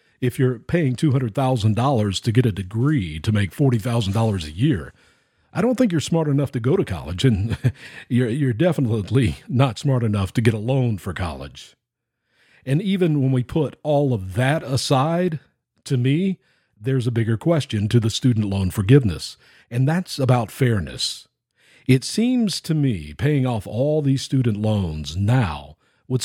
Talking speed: 165 wpm